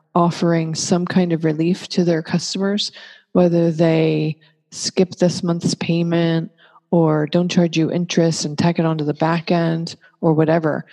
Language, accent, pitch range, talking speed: English, American, 160-185 Hz, 155 wpm